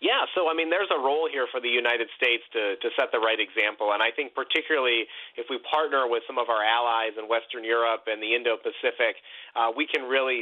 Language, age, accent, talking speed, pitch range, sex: English, 30-49, American, 230 wpm, 115-155 Hz, male